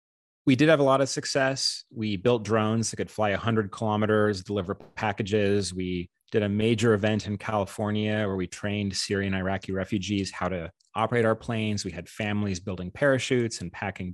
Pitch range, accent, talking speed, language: 95-110 Hz, American, 180 wpm, English